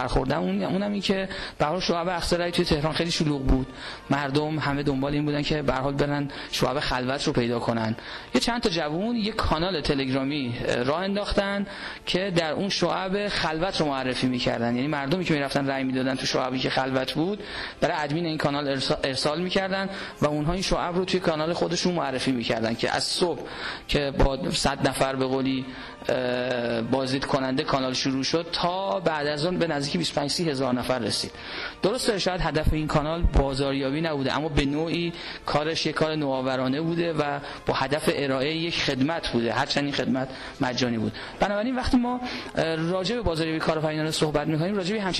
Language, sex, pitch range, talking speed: Persian, male, 135-170 Hz, 180 wpm